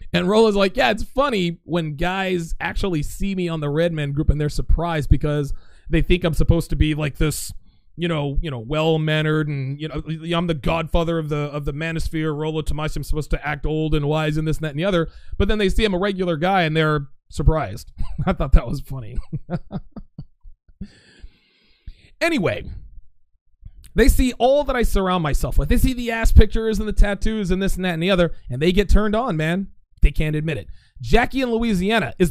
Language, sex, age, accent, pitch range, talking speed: English, male, 30-49, American, 150-205 Hz, 215 wpm